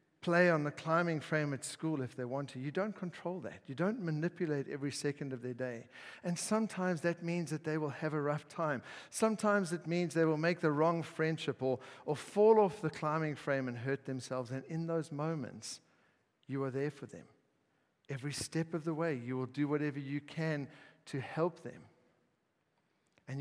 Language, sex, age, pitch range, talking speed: English, male, 50-69, 130-160 Hz, 195 wpm